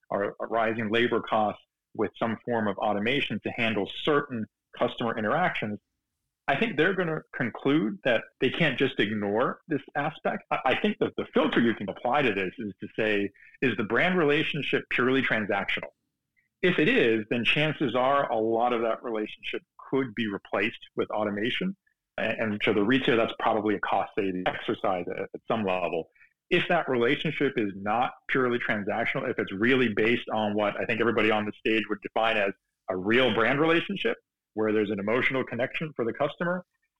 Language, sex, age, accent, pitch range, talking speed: English, male, 40-59, American, 105-140 Hz, 175 wpm